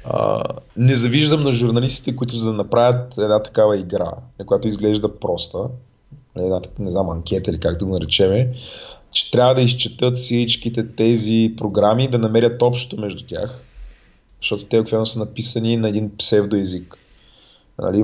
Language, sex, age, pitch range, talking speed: Bulgarian, male, 20-39, 105-125 Hz, 155 wpm